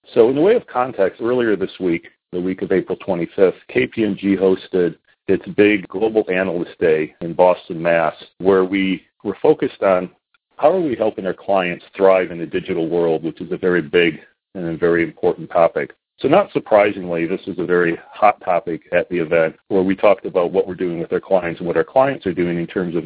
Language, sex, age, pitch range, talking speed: English, male, 40-59, 85-95 Hz, 210 wpm